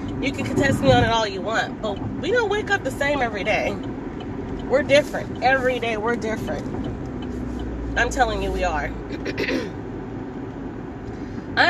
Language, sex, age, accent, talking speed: English, female, 20-39, American, 155 wpm